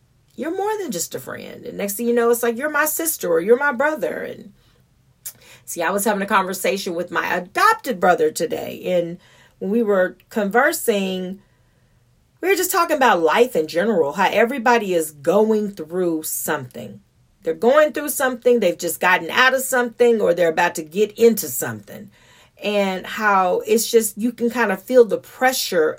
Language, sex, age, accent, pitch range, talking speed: English, female, 40-59, American, 175-260 Hz, 180 wpm